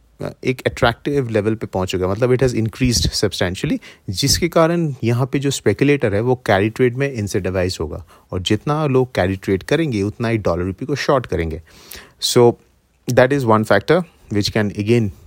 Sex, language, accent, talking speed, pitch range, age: male, English, Indian, 85 wpm, 95-125 Hz, 30-49